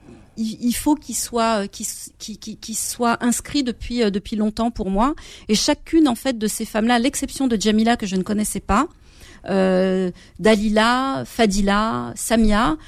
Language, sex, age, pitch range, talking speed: French, female, 40-59, 200-245 Hz, 155 wpm